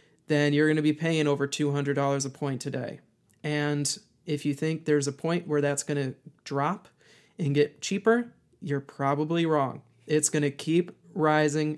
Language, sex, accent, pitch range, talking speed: English, male, American, 145-160 Hz, 175 wpm